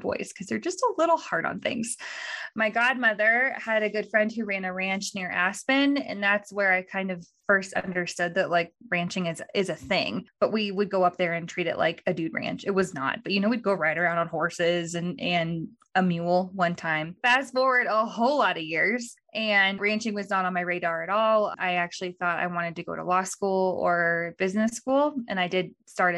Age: 20-39